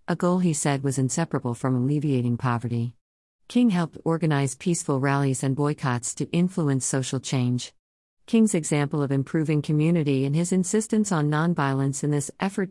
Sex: female